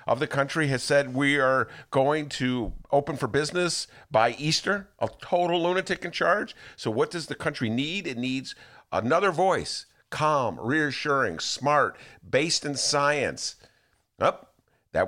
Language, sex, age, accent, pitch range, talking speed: English, male, 50-69, American, 130-190 Hz, 145 wpm